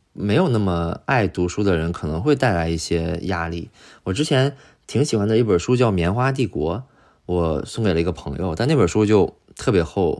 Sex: male